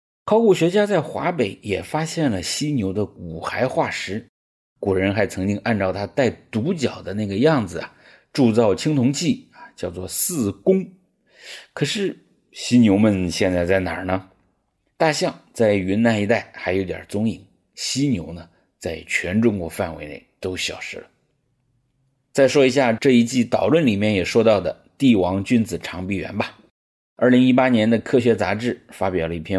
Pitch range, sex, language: 95-125 Hz, male, English